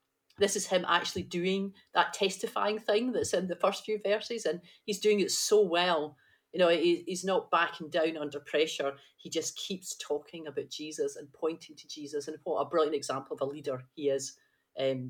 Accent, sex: British, female